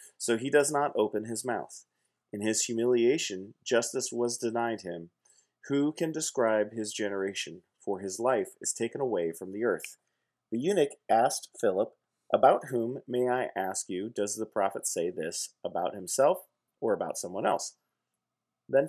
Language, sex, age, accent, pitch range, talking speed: English, male, 30-49, American, 105-130 Hz, 160 wpm